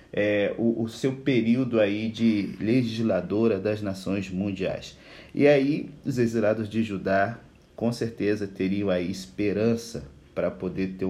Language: Portuguese